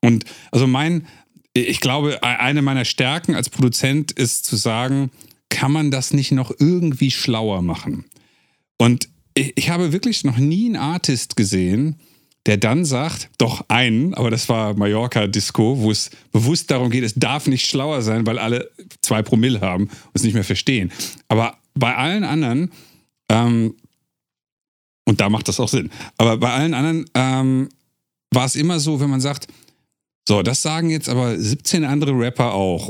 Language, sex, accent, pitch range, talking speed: German, male, German, 110-145 Hz, 165 wpm